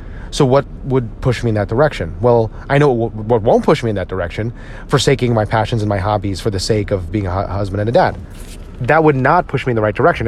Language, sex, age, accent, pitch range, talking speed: English, male, 30-49, American, 100-130 Hz, 255 wpm